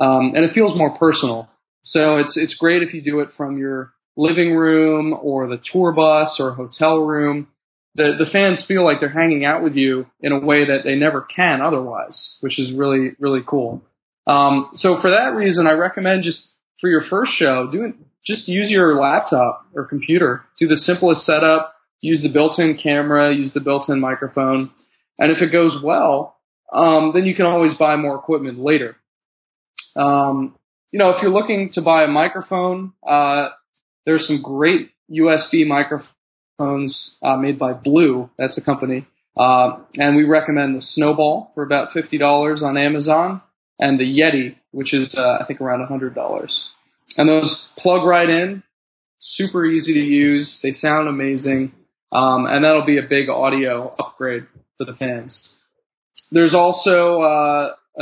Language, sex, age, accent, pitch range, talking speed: English, male, 20-39, American, 140-165 Hz, 170 wpm